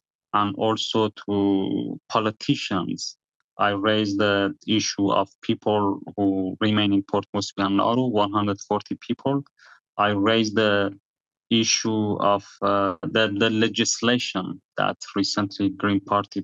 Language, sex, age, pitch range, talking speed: English, male, 30-49, 100-115 Hz, 115 wpm